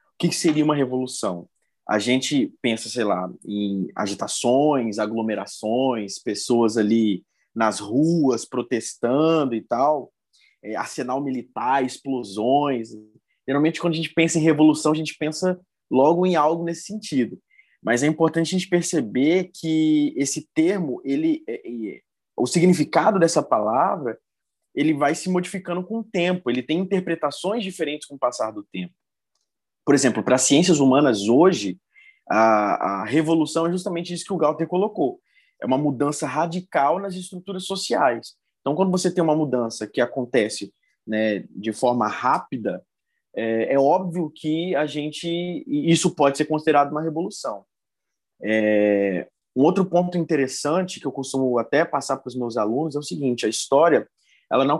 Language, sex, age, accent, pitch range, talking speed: Portuguese, male, 20-39, Brazilian, 125-175 Hz, 150 wpm